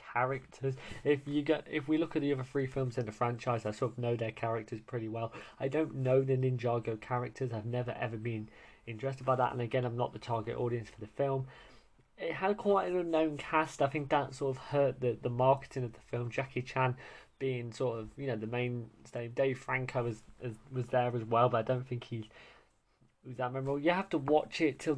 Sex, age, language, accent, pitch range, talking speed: male, 20-39, English, British, 120-145 Hz, 230 wpm